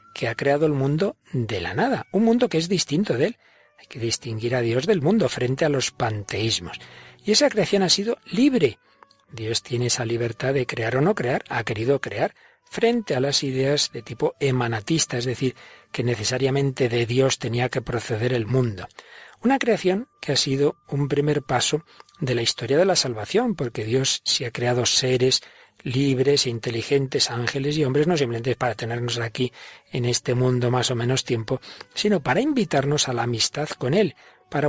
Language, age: Spanish, 40-59